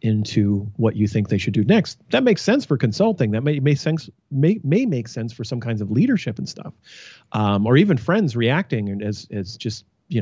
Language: English